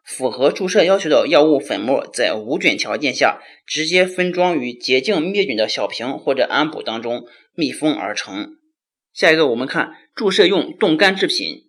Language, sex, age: Chinese, male, 30-49